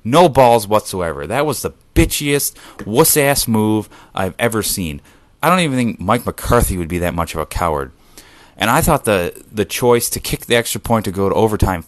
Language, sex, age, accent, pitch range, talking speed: English, male, 30-49, American, 95-145 Hz, 200 wpm